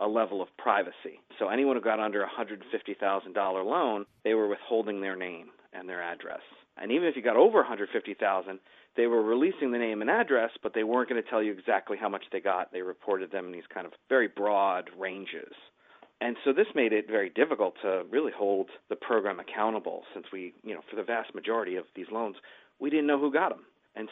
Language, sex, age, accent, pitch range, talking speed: English, male, 40-59, American, 100-120 Hz, 215 wpm